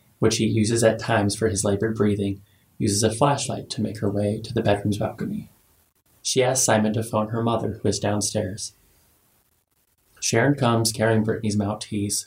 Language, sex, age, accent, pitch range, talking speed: English, male, 20-39, American, 100-115 Hz, 170 wpm